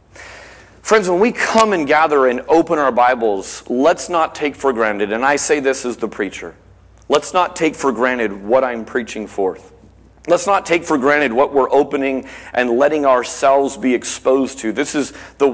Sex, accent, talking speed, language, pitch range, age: male, American, 185 wpm, English, 140-205 Hz, 40-59